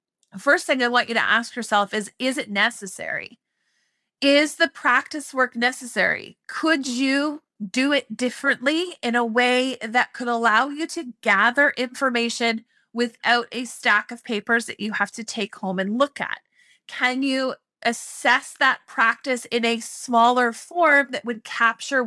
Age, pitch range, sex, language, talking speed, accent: 30-49, 225-275 Hz, female, English, 160 wpm, American